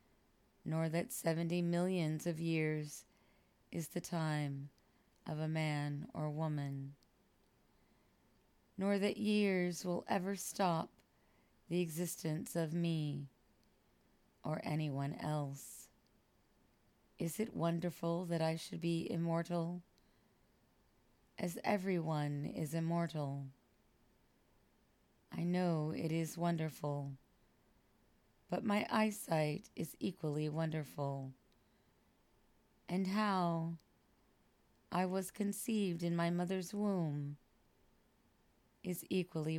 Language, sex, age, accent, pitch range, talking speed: English, female, 30-49, American, 150-175 Hz, 90 wpm